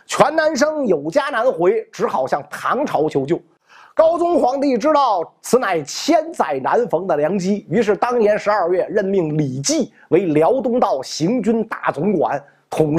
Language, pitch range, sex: Chinese, 195-280 Hz, male